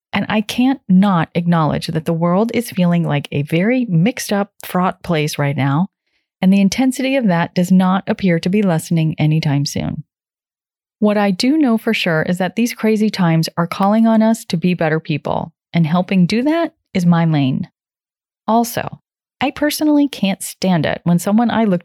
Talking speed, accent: 185 wpm, American